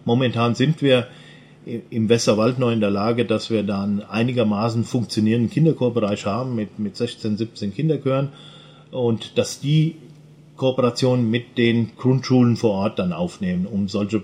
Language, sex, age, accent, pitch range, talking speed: German, male, 40-59, German, 110-140 Hz, 145 wpm